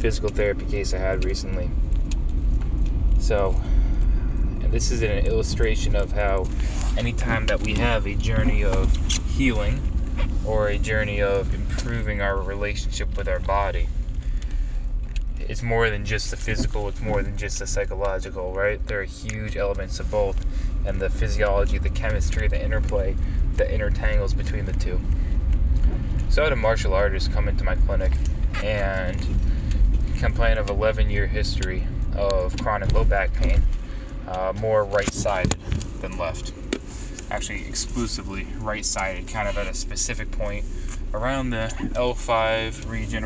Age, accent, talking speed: 20-39, American, 145 wpm